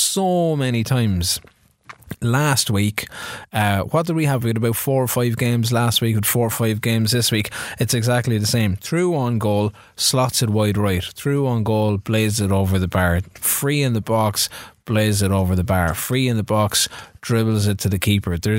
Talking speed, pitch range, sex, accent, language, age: 205 wpm, 100-125 Hz, male, Irish, English, 20-39